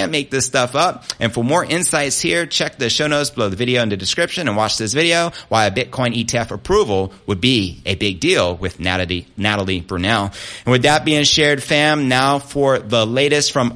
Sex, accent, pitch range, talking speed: male, American, 105-135 Hz, 210 wpm